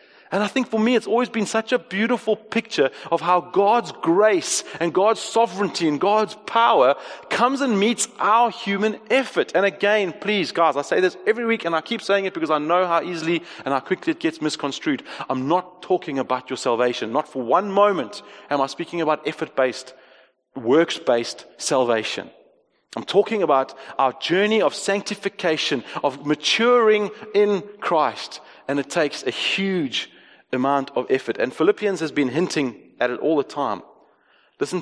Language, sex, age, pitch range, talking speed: English, male, 30-49, 155-215 Hz, 170 wpm